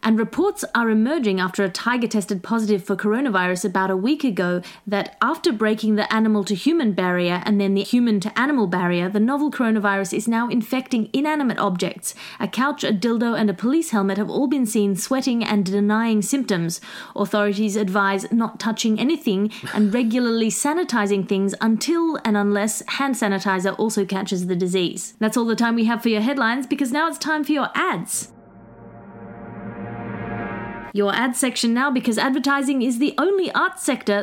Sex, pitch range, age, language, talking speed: female, 205-270 Hz, 30-49, English, 175 wpm